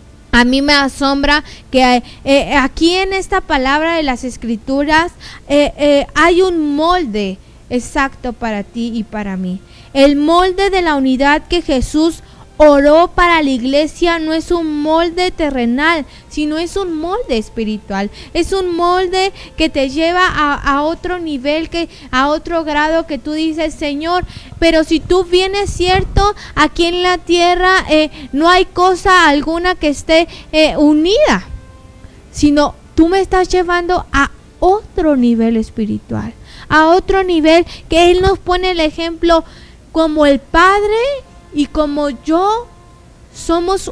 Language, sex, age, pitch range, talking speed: Spanish, female, 20-39, 280-350 Hz, 145 wpm